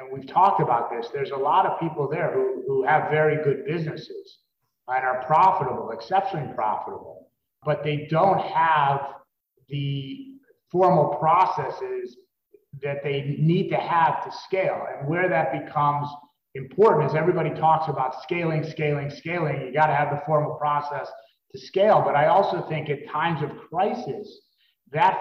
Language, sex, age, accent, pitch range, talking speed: English, male, 30-49, American, 140-175 Hz, 155 wpm